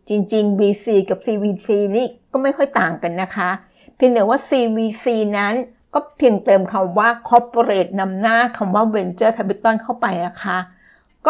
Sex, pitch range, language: female, 185-235 Hz, Thai